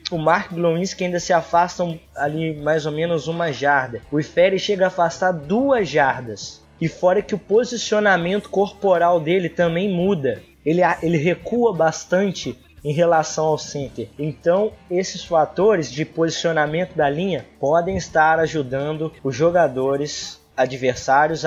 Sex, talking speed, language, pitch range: male, 135 wpm, Portuguese, 140-170 Hz